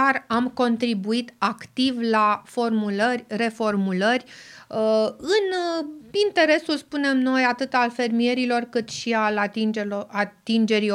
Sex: female